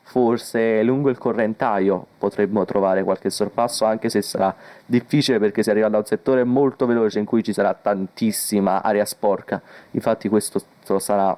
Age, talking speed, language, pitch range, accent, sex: 20-39, 160 wpm, Italian, 100-120 Hz, native, male